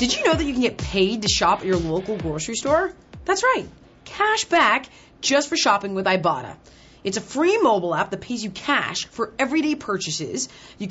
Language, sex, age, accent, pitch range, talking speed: English, female, 30-49, American, 185-295 Hz, 205 wpm